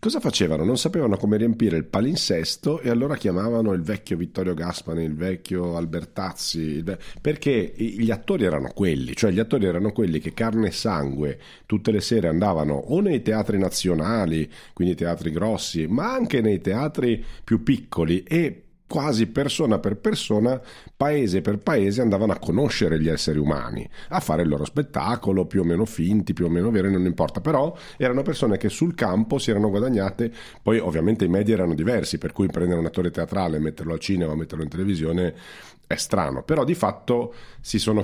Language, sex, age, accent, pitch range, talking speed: Italian, male, 40-59, native, 80-110 Hz, 180 wpm